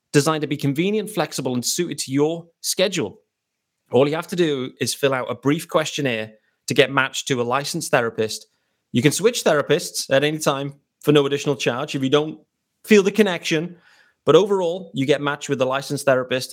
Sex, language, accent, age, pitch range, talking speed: male, English, British, 30-49, 125-170 Hz, 195 wpm